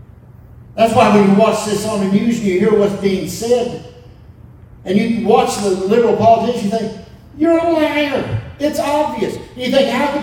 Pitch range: 135-220 Hz